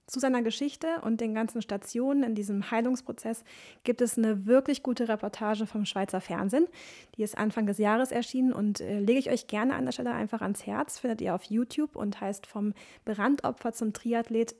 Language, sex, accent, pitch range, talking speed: German, female, German, 205-240 Hz, 190 wpm